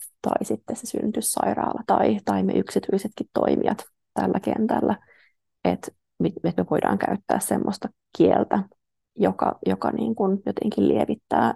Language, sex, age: Finnish, female, 20-39